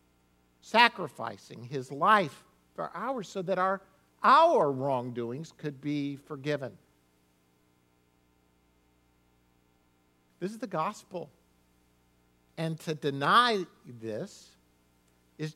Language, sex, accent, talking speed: English, male, American, 85 wpm